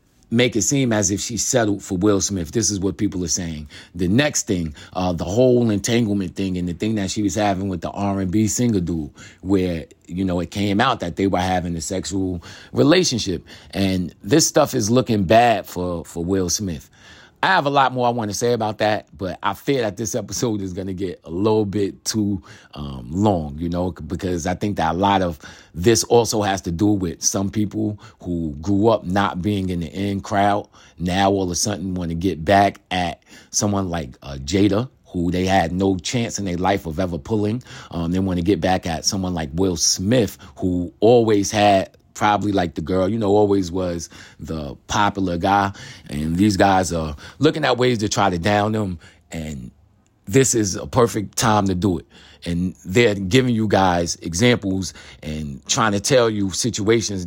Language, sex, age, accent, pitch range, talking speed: English, male, 30-49, American, 85-105 Hz, 205 wpm